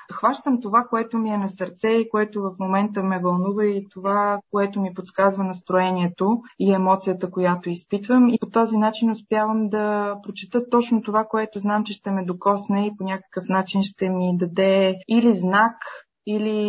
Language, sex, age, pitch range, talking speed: Bulgarian, female, 20-39, 180-205 Hz, 175 wpm